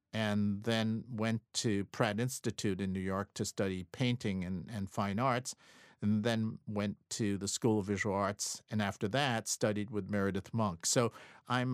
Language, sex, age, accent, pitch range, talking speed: English, male, 50-69, American, 100-120 Hz, 175 wpm